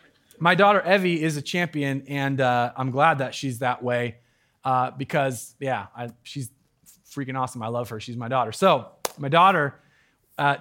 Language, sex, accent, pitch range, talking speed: English, male, American, 125-155 Hz, 170 wpm